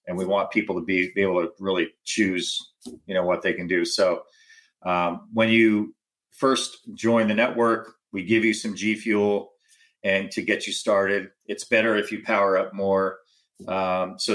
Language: English